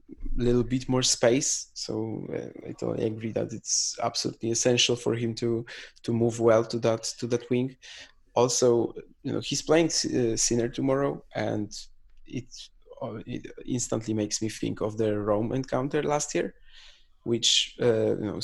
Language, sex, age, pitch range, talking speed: English, male, 20-39, 110-125 Hz, 165 wpm